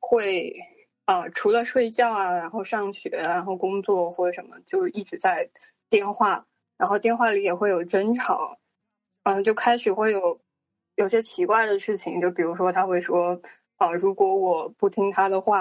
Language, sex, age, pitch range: Chinese, female, 20-39, 190-240 Hz